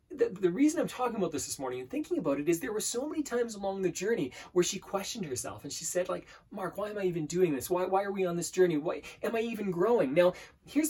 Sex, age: male, 20-39